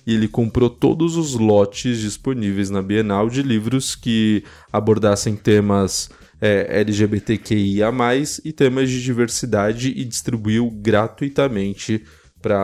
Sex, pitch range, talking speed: male, 105-130 Hz, 110 wpm